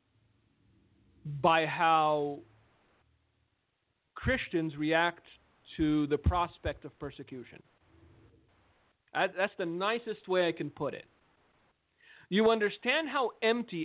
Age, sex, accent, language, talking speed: 50-69, male, American, English, 90 wpm